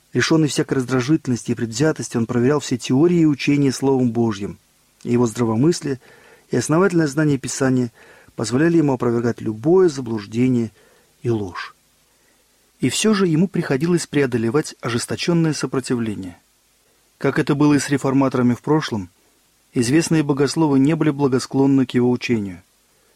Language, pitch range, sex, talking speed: Russian, 120-155 Hz, male, 130 wpm